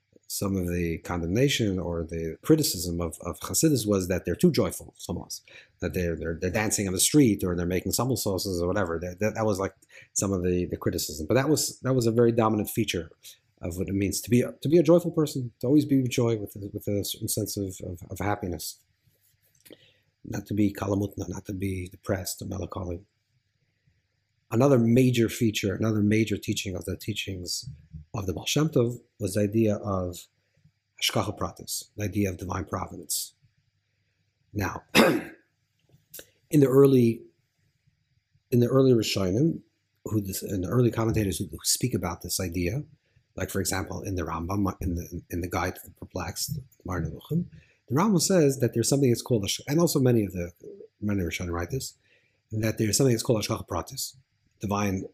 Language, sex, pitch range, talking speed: English, male, 95-120 Hz, 190 wpm